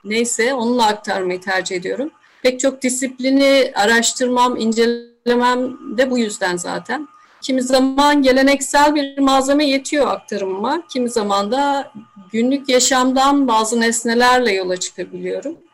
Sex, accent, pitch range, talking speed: female, native, 210-275 Hz, 115 wpm